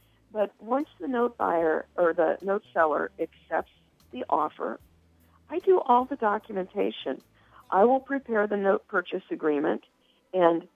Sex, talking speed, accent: female, 140 wpm, American